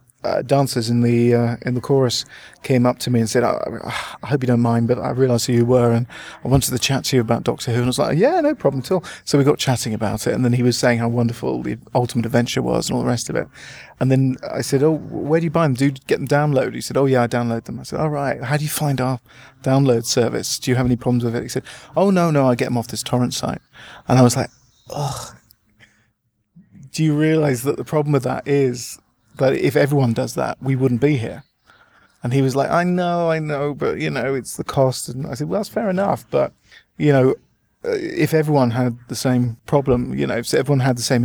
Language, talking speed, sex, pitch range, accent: English, 265 wpm, male, 120-140 Hz, British